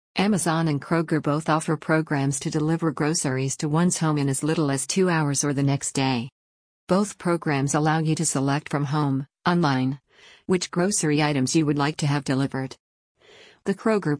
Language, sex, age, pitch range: English, female, 50-69, 140-165 Hz